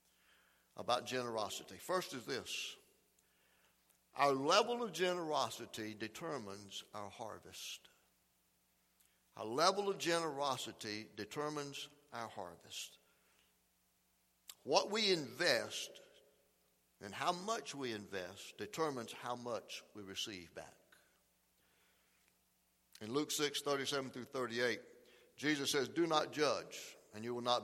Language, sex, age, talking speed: English, male, 60-79, 105 wpm